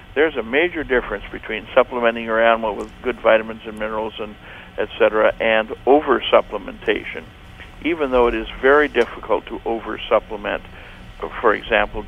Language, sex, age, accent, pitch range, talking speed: English, male, 60-79, American, 105-130 Hz, 145 wpm